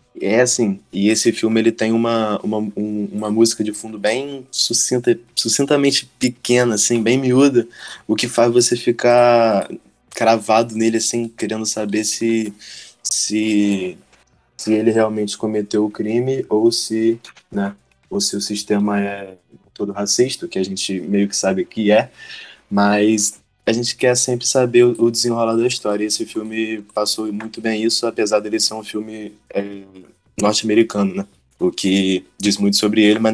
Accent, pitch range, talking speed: Brazilian, 105-120 Hz, 150 wpm